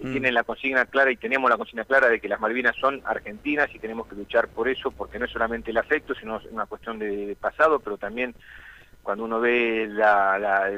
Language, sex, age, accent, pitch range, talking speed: Spanish, male, 40-59, Argentinian, 110-125 Hz, 230 wpm